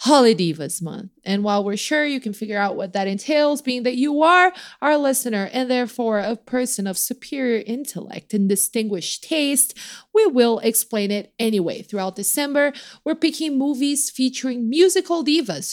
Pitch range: 200-270 Hz